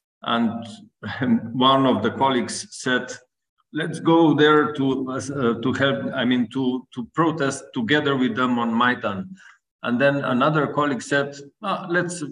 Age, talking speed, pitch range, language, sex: 50-69, 145 wpm, 115-150 Hz, Ukrainian, male